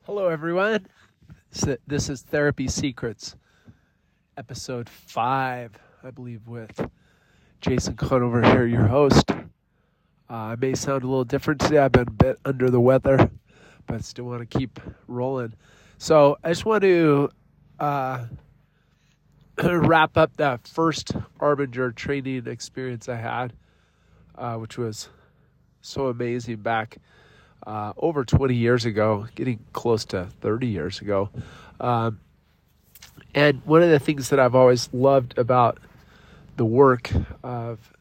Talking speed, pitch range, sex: 135 wpm, 115-140 Hz, male